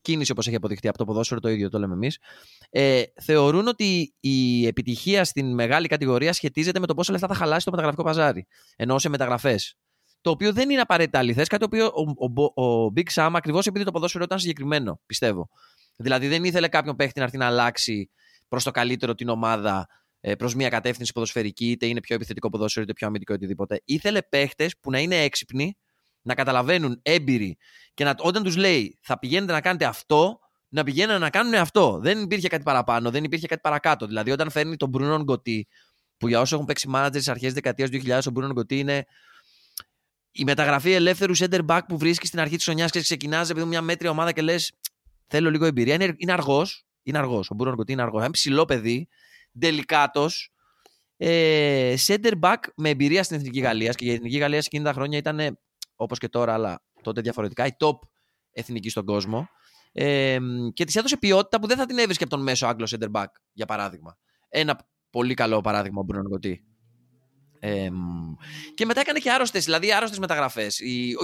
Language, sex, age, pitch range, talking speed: Greek, male, 20-39, 120-170 Hz, 190 wpm